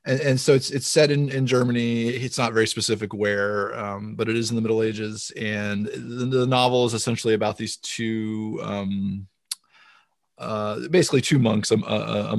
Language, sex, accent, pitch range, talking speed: English, male, American, 105-115 Hz, 190 wpm